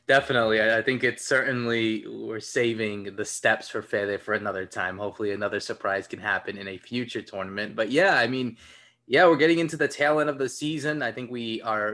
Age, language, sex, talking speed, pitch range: 20-39, English, male, 210 wpm, 110-130 Hz